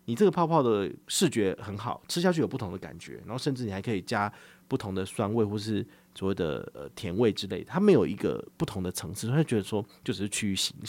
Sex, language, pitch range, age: male, Chinese, 100-135 Hz, 30-49